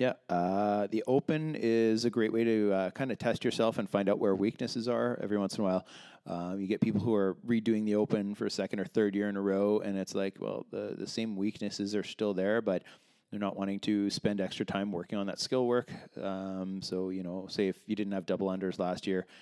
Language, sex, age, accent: English, male, 20-39, American